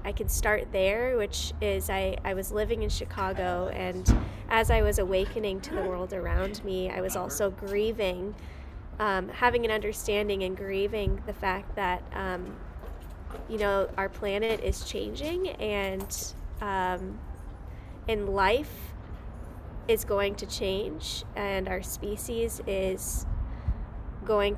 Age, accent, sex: 20-39, American, female